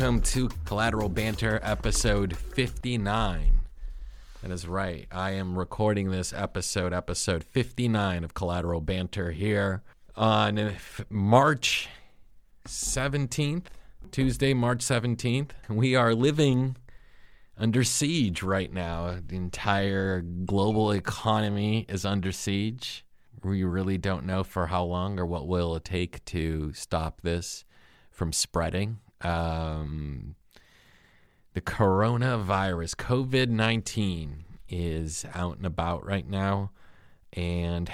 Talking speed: 110 wpm